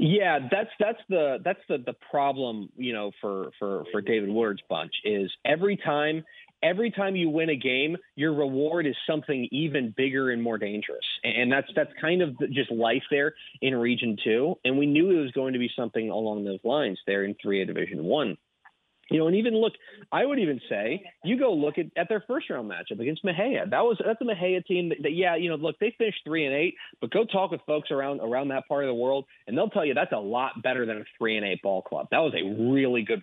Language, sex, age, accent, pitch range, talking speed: English, male, 30-49, American, 115-160 Hz, 235 wpm